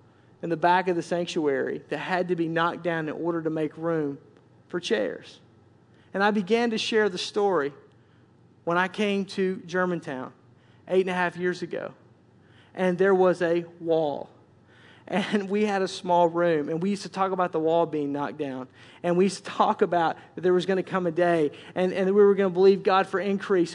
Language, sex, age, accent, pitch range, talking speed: English, male, 40-59, American, 180-220 Hz, 210 wpm